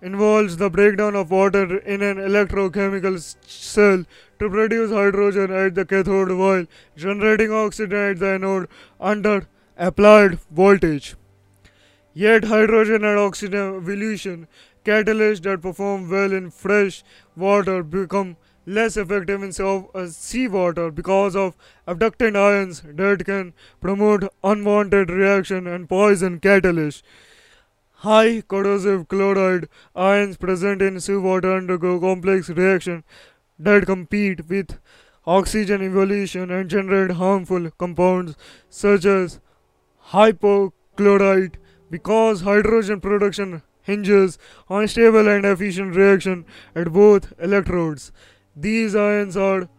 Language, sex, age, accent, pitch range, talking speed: English, male, 20-39, Indian, 185-205 Hz, 110 wpm